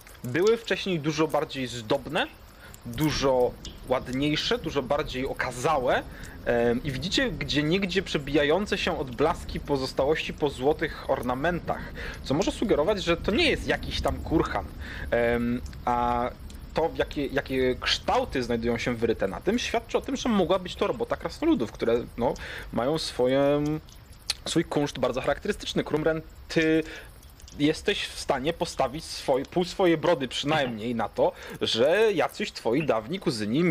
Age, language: 30-49, Polish